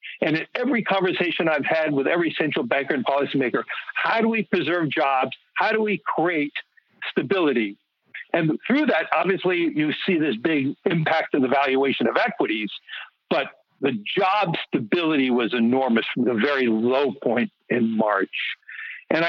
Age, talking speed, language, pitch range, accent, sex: 60-79, 155 wpm, English, 135-200 Hz, American, male